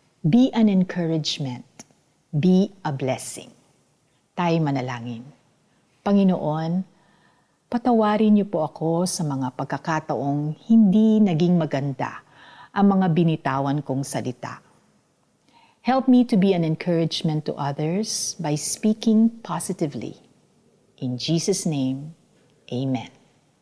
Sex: female